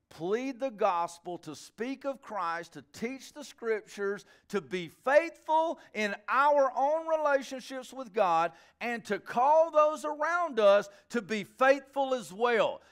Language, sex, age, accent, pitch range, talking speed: English, male, 50-69, American, 175-275 Hz, 145 wpm